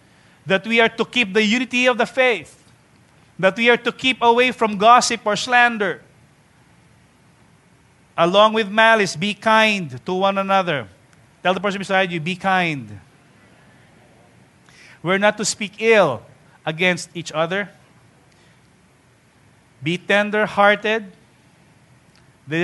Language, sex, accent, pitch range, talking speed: English, male, Filipino, 140-190 Hz, 120 wpm